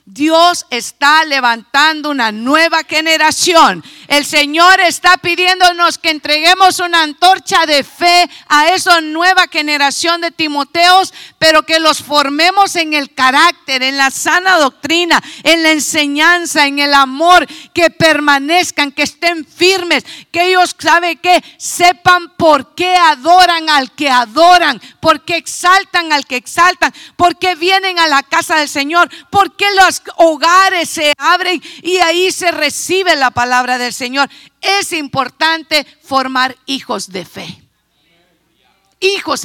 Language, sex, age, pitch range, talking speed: Spanish, female, 50-69, 265-345 Hz, 135 wpm